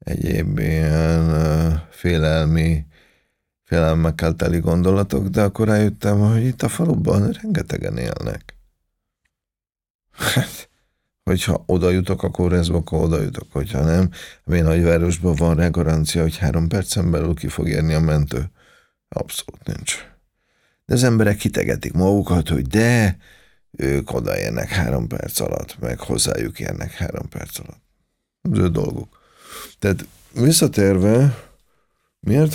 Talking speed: 120 wpm